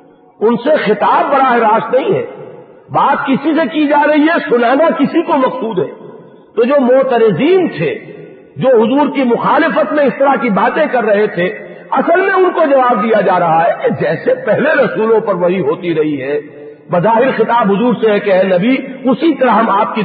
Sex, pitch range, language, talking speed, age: male, 210-295 Hz, English, 200 wpm, 50-69